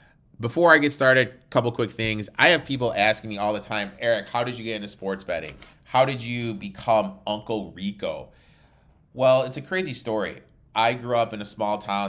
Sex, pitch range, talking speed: male, 95-120 Hz, 210 wpm